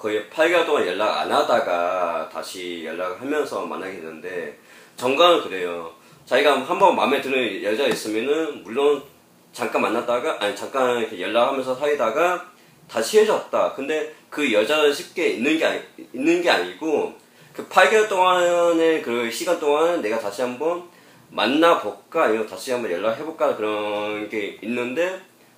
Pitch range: 120-190 Hz